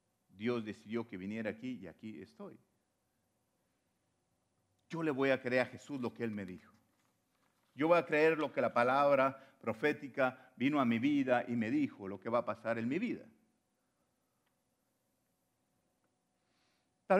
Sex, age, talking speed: male, 50-69, 155 wpm